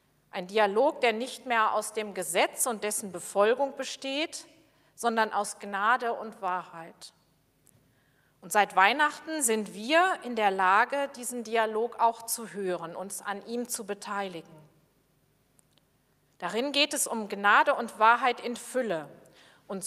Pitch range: 185-255 Hz